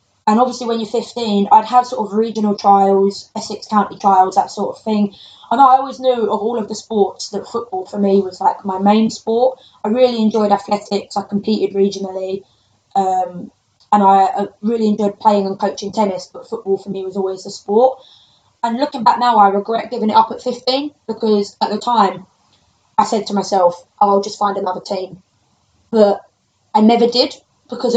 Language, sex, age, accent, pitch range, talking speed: English, female, 20-39, British, 200-235 Hz, 190 wpm